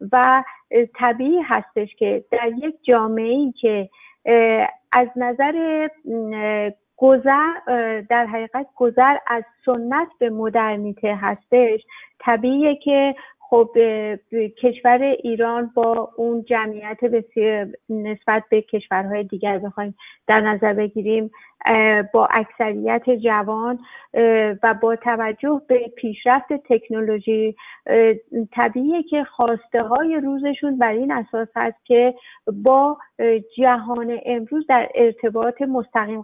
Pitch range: 220-260 Hz